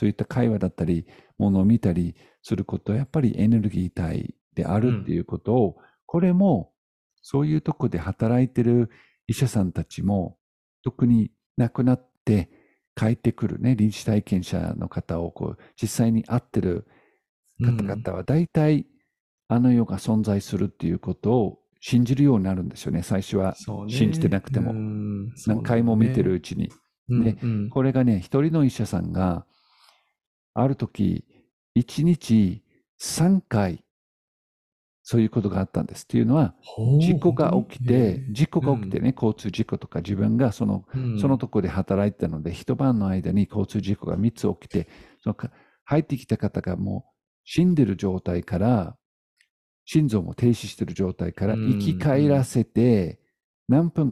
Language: Japanese